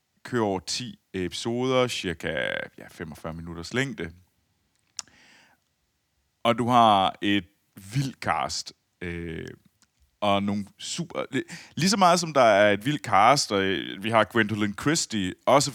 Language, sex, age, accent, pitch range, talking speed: Danish, male, 30-49, native, 95-125 Hz, 125 wpm